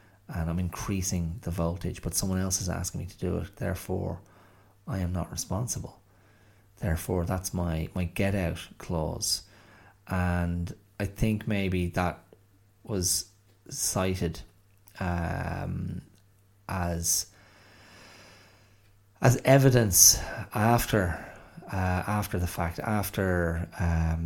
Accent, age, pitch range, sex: Irish, 30-49, 85-100 Hz, male